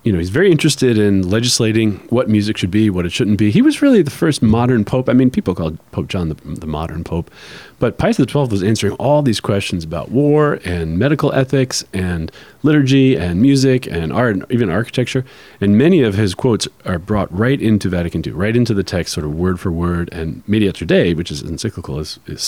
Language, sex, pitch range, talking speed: English, male, 90-130 Hz, 220 wpm